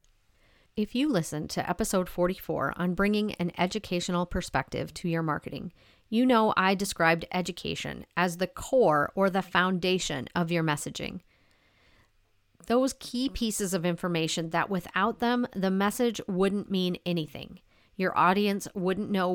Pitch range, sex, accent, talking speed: 170-210 Hz, female, American, 140 wpm